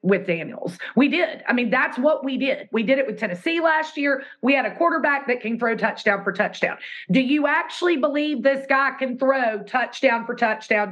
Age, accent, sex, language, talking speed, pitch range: 30-49, American, female, English, 210 wpm, 215-285 Hz